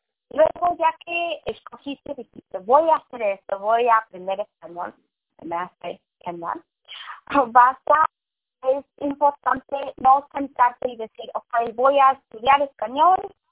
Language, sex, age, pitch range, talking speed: English, female, 20-39, 210-285 Hz, 135 wpm